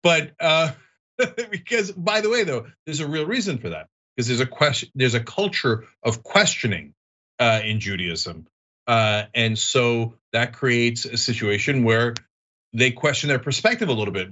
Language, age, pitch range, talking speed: English, 40-59, 115-180 Hz, 170 wpm